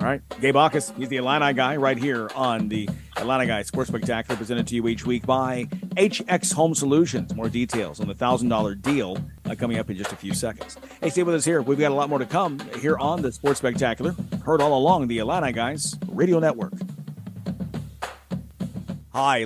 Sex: male